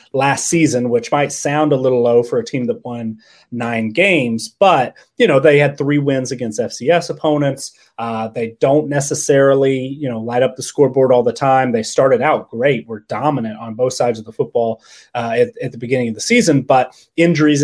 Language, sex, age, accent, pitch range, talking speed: English, male, 30-49, American, 120-145 Hz, 205 wpm